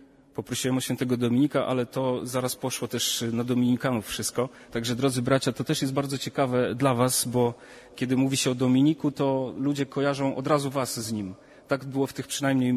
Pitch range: 125-140 Hz